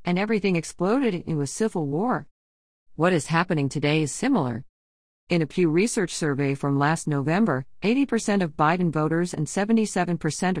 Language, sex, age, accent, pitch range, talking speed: English, female, 50-69, American, 140-185 Hz, 155 wpm